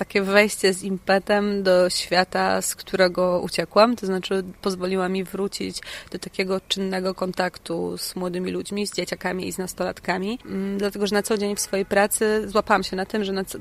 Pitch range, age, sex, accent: 185-210 Hz, 30-49, female, native